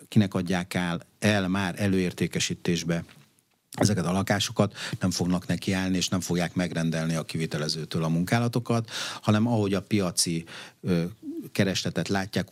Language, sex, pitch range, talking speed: Hungarian, male, 90-110 Hz, 130 wpm